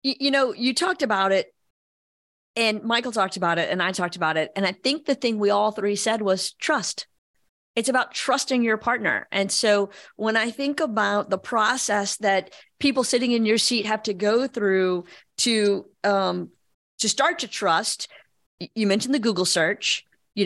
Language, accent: English, American